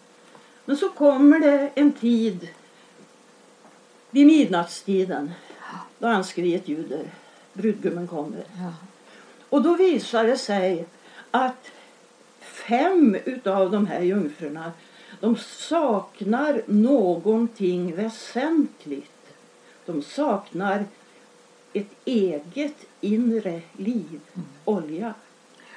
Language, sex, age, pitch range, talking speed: Swedish, female, 60-79, 190-255 Hz, 85 wpm